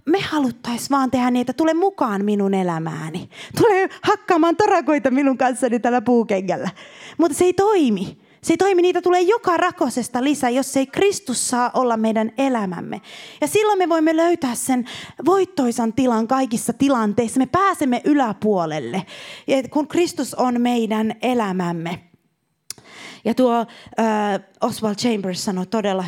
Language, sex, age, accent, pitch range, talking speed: Finnish, female, 20-39, native, 200-275 Hz, 140 wpm